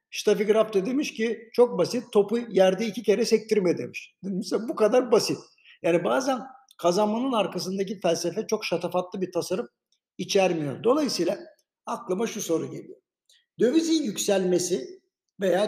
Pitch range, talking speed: 175-225 Hz, 135 wpm